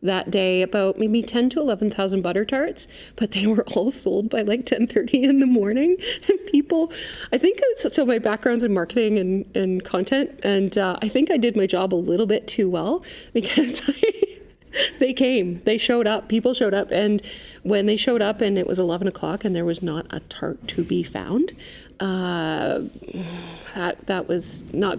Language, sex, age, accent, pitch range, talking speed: English, female, 30-49, American, 185-235 Hz, 190 wpm